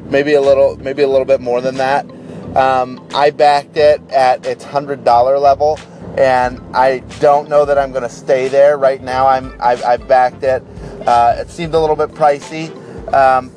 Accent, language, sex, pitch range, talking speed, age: American, English, male, 125-155 Hz, 190 wpm, 30-49